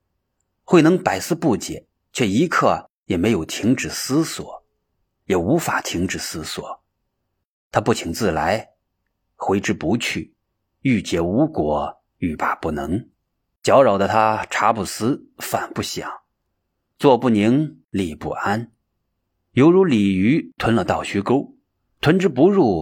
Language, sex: Chinese, male